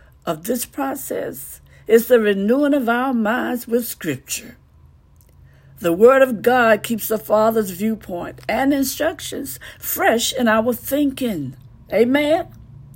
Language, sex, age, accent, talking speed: English, female, 60-79, American, 120 wpm